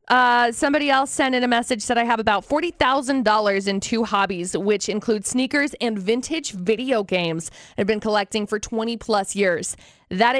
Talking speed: 180 wpm